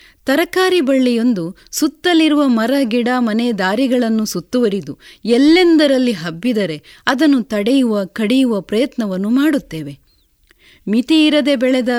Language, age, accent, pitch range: Kannada, 30-49, native, 210-290 Hz